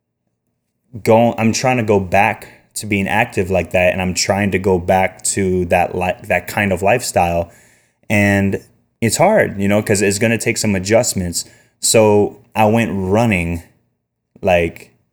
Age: 20-39